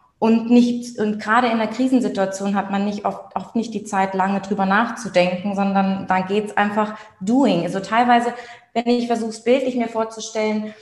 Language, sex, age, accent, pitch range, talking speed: German, female, 20-39, German, 180-225 Hz, 170 wpm